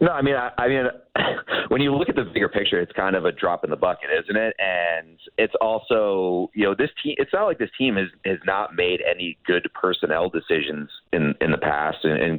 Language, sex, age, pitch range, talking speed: English, male, 30-49, 90-115 Hz, 230 wpm